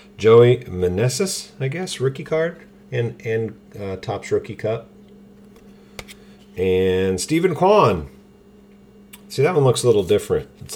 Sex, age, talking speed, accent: male, 40-59, 130 wpm, American